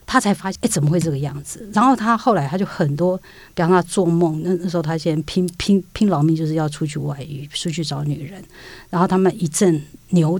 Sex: female